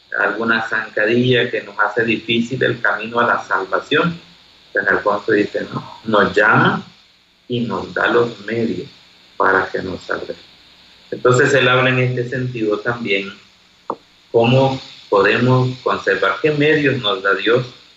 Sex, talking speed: male, 140 wpm